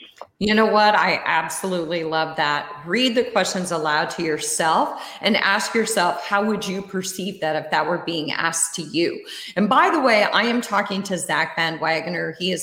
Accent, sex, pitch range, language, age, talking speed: American, female, 165-225 Hz, English, 30-49, 195 wpm